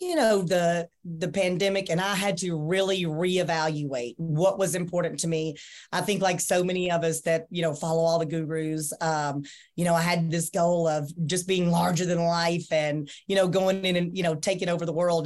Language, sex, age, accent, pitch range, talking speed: English, female, 30-49, American, 165-185 Hz, 215 wpm